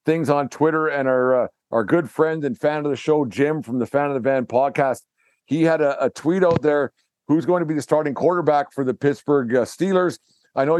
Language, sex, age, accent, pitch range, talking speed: English, male, 50-69, American, 130-155 Hz, 240 wpm